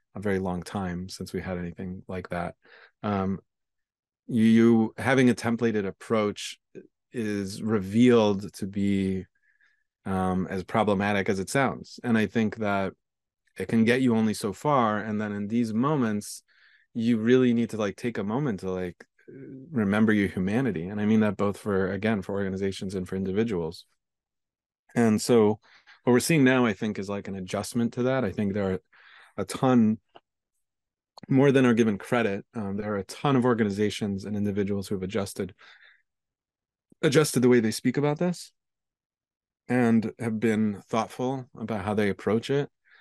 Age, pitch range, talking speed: 30-49, 100-120 Hz, 170 wpm